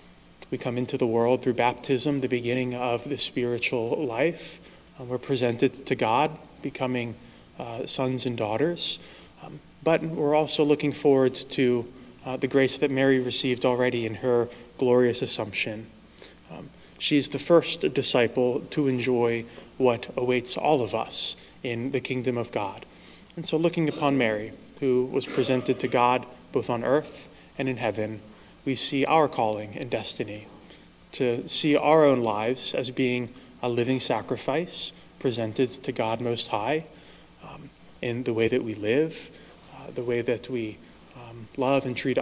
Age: 20-39